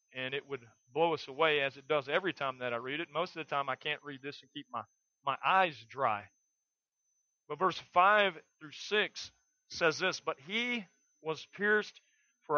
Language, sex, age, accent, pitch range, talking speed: English, male, 40-59, American, 150-195 Hz, 195 wpm